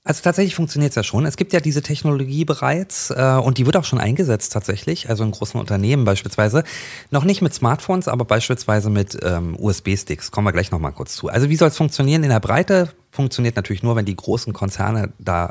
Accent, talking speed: German, 215 wpm